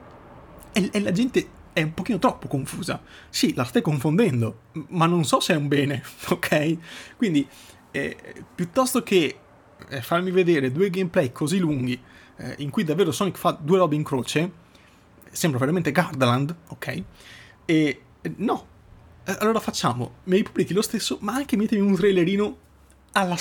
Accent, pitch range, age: native, 135-190 Hz, 30-49